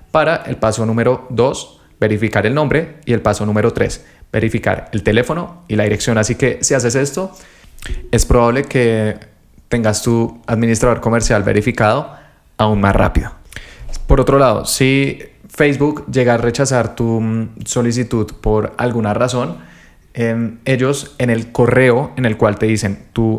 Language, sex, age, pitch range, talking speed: Spanish, male, 20-39, 110-125 Hz, 150 wpm